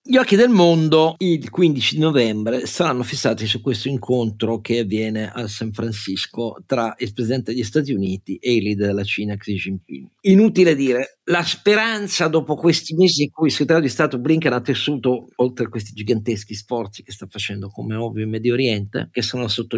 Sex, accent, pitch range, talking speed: male, native, 105-130 Hz, 190 wpm